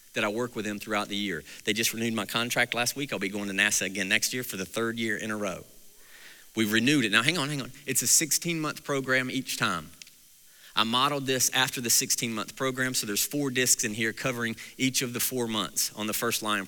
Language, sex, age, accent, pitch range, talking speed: English, male, 40-59, American, 105-125 Hz, 250 wpm